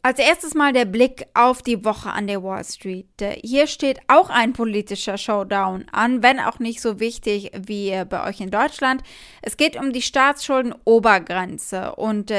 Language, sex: German, female